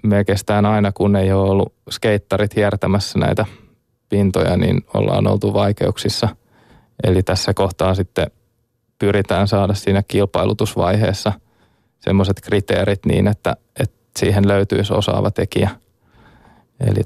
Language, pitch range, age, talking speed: Finnish, 100-110 Hz, 20-39, 115 wpm